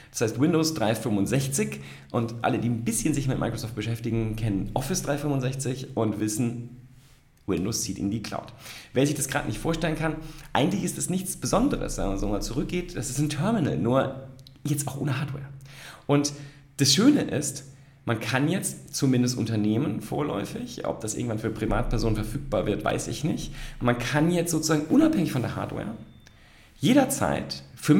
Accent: German